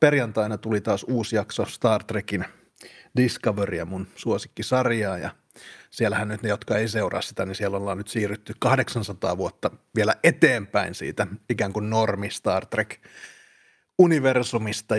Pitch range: 105-125 Hz